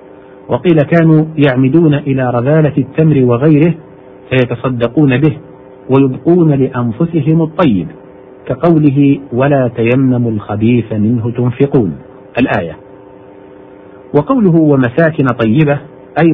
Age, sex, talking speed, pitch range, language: 50-69, male, 85 wpm, 110-145 Hz, Arabic